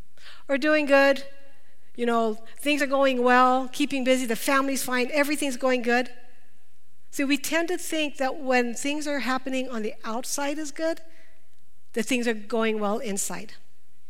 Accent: American